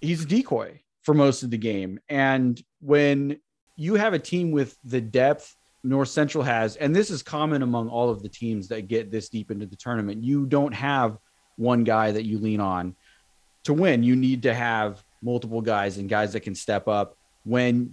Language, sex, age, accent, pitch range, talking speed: English, male, 30-49, American, 110-135 Hz, 200 wpm